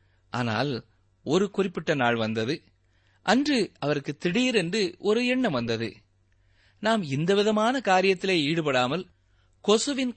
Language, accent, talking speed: Tamil, native, 95 wpm